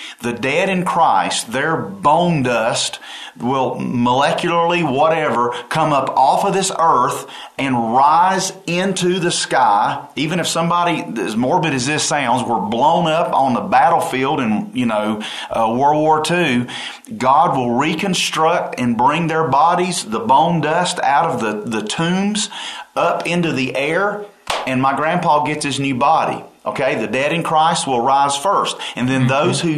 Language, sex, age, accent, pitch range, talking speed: English, male, 40-59, American, 140-195 Hz, 160 wpm